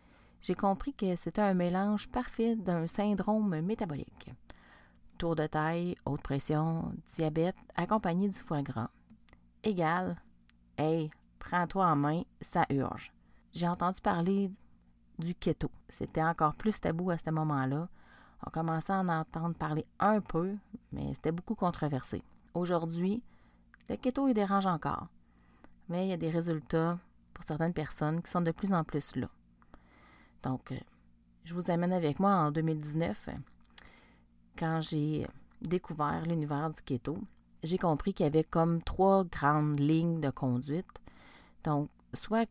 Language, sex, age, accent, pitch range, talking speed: French, female, 30-49, Canadian, 145-180 Hz, 140 wpm